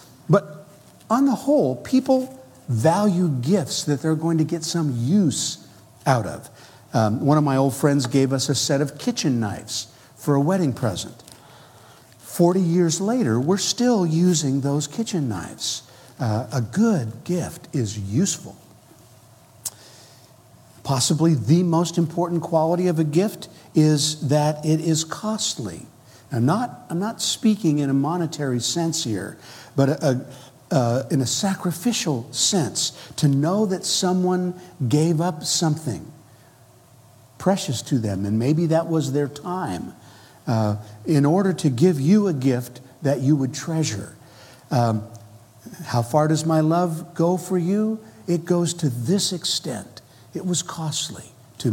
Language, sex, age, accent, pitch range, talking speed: English, male, 60-79, American, 125-170 Hz, 140 wpm